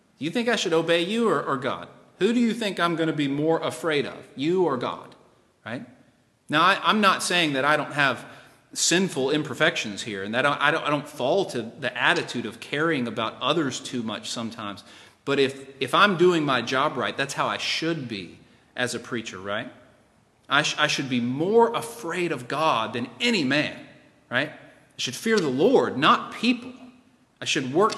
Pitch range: 125-180 Hz